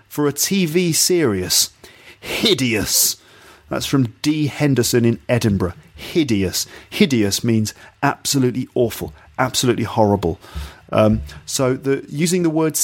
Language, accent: English, British